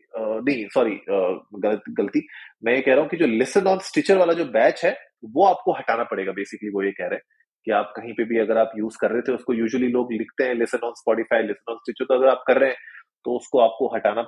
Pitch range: 125-170 Hz